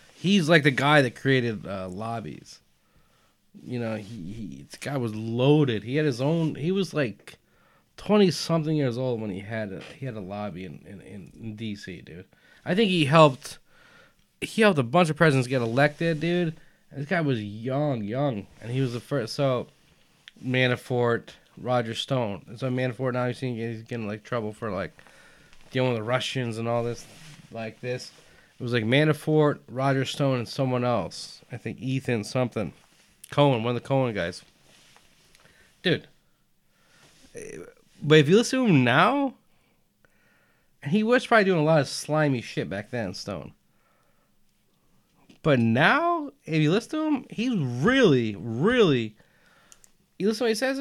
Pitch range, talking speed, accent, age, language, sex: 120-175 Hz, 170 wpm, American, 20-39, English, male